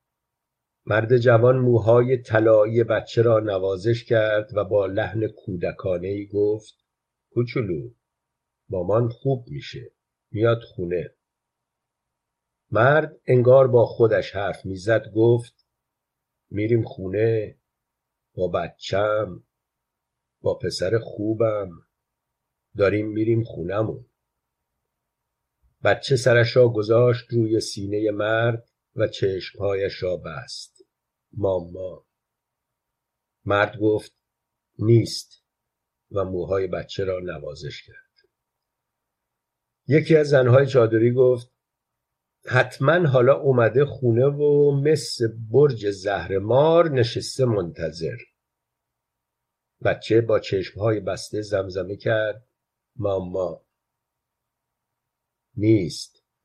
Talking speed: 85 wpm